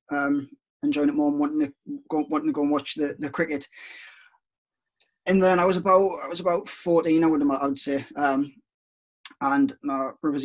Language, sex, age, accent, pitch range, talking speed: English, male, 10-29, British, 140-170 Hz, 195 wpm